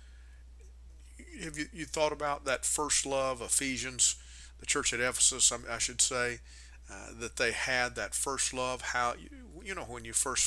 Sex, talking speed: male, 180 wpm